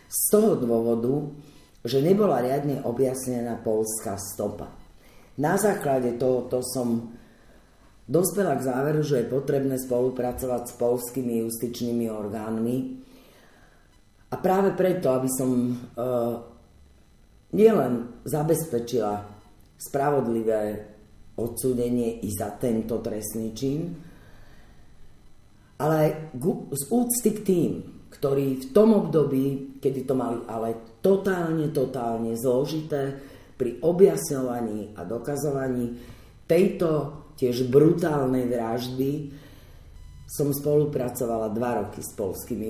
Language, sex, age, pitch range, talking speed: Slovak, female, 40-59, 115-145 Hz, 95 wpm